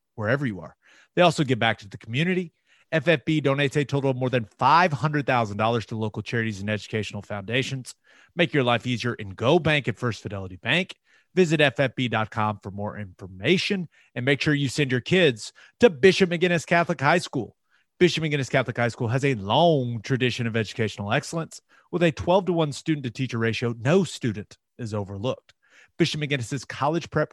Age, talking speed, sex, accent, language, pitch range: 30-49, 185 wpm, male, American, English, 115-165 Hz